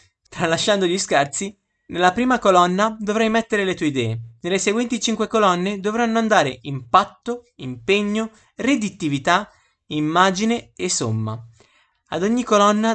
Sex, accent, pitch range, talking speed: male, native, 145-210 Hz, 120 wpm